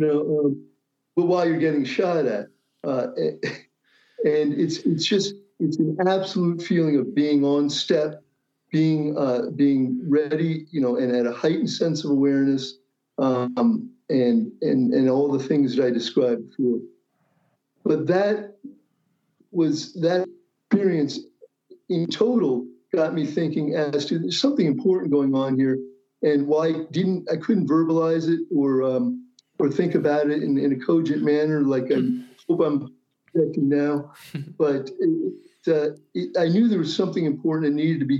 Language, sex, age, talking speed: English, male, 50-69, 160 wpm